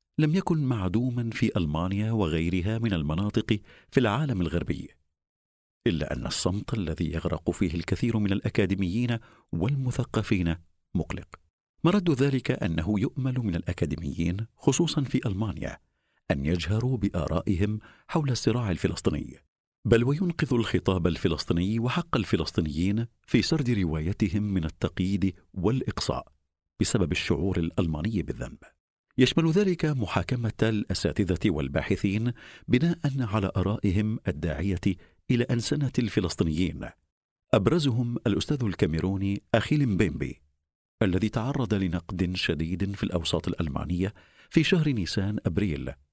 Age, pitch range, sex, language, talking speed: 50-69, 85-115 Hz, male, Arabic, 105 wpm